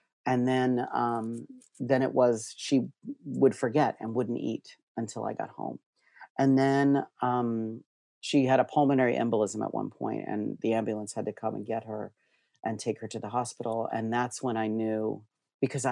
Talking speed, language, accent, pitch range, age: 180 wpm, English, American, 115-140 Hz, 40-59